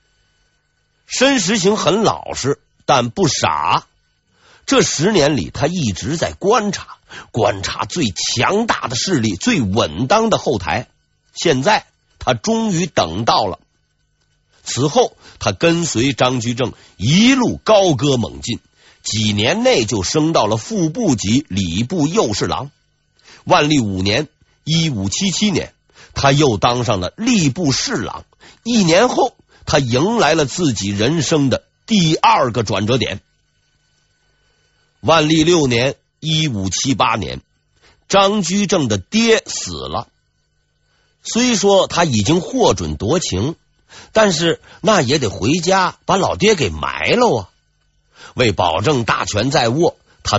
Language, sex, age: Chinese, male, 50-69